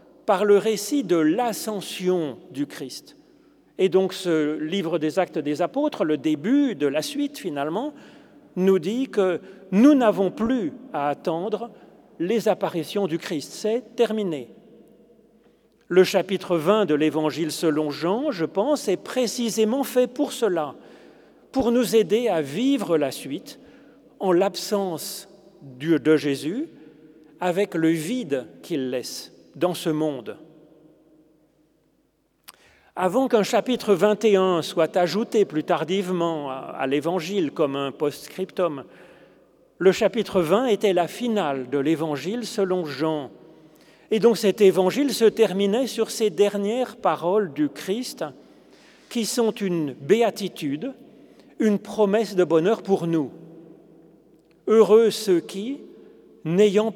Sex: male